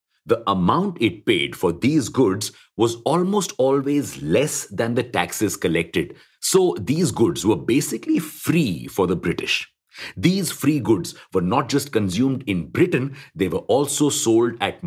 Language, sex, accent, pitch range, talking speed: English, male, Indian, 105-145 Hz, 155 wpm